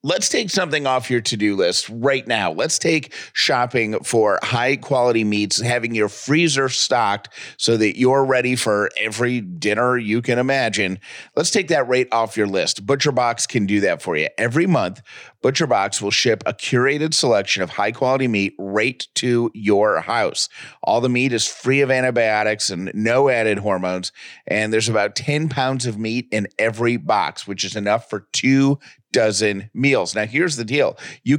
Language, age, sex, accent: English, 30-49, male, American